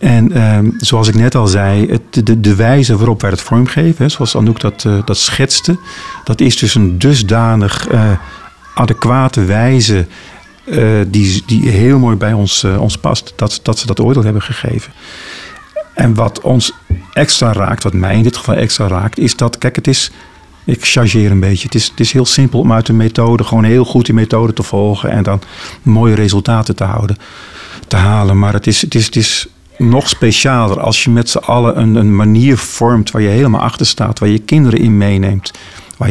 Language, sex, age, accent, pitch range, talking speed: Dutch, male, 50-69, Dutch, 105-125 Hz, 205 wpm